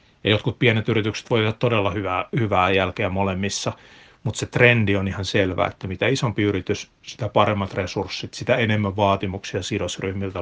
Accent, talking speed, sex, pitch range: native, 160 wpm, male, 100-120 Hz